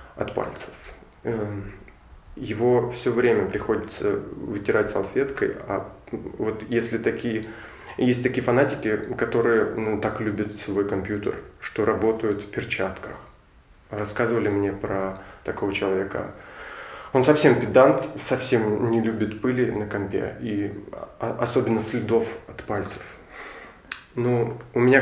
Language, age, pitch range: Russian, 20-39, 105-125 Hz